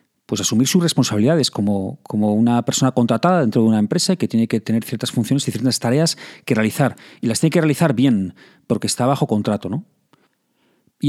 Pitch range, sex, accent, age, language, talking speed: 120-160 Hz, male, Spanish, 40-59, Spanish, 195 wpm